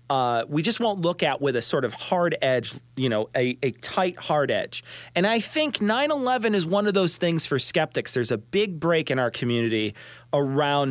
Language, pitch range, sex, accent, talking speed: English, 125-185 Hz, male, American, 210 wpm